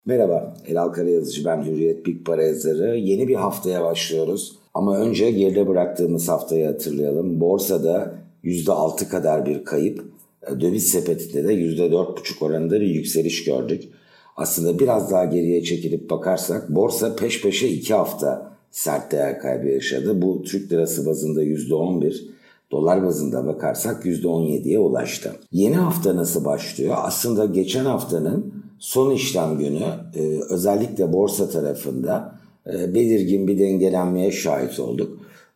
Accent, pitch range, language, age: native, 80-105 Hz, Turkish, 60-79